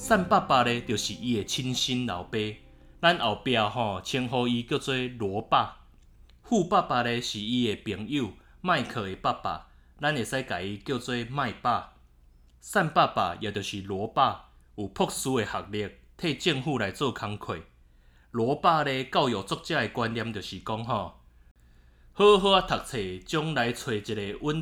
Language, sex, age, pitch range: Chinese, male, 20-39, 95-135 Hz